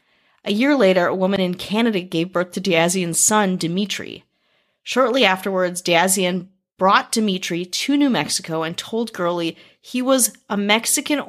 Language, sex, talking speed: English, female, 150 wpm